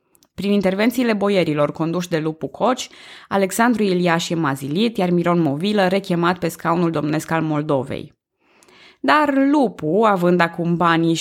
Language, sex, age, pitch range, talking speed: Romanian, female, 20-39, 160-235 Hz, 135 wpm